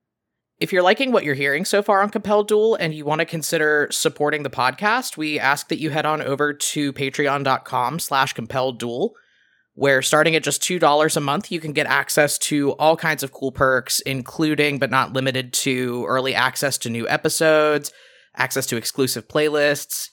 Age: 20-39